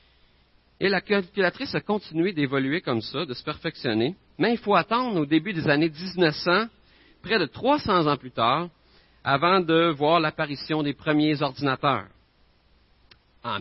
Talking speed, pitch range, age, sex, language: 150 wpm, 135-190 Hz, 50-69, male, French